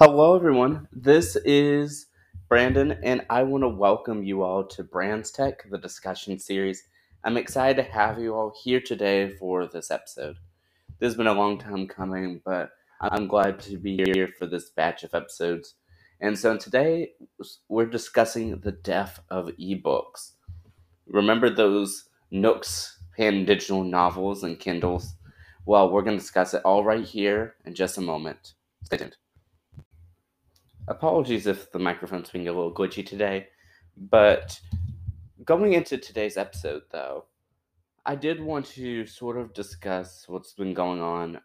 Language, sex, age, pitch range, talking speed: English, male, 20-39, 90-110 Hz, 150 wpm